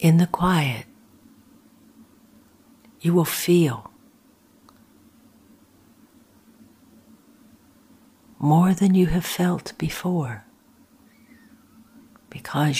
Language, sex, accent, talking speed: English, female, American, 60 wpm